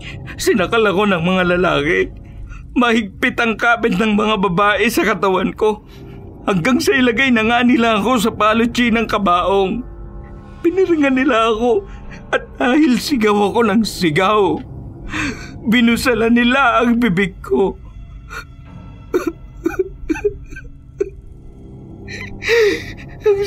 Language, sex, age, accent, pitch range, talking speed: Filipino, male, 50-69, native, 215-315 Hz, 100 wpm